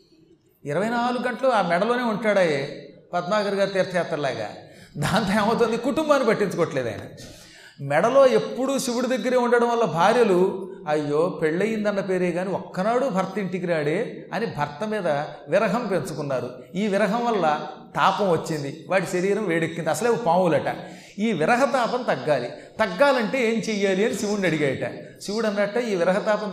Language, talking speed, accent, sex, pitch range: Telugu, 130 wpm, native, male, 170-220 Hz